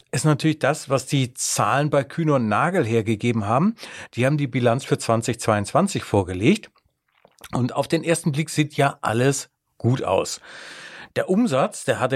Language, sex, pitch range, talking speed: German, male, 115-140 Hz, 165 wpm